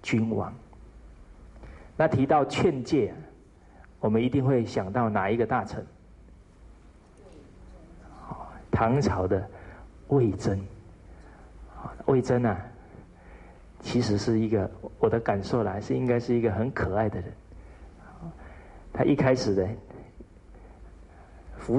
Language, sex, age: Chinese, male, 50-69